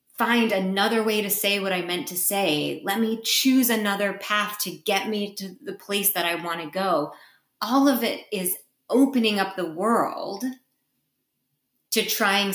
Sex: female